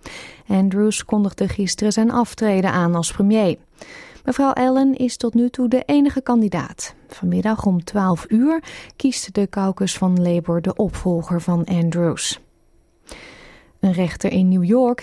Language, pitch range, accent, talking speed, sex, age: Dutch, 185-235 Hz, Dutch, 140 wpm, female, 30-49